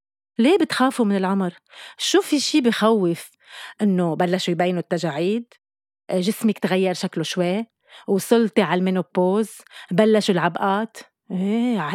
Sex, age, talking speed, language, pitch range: female, 30-49, 115 wpm, Arabic, 185-245 Hz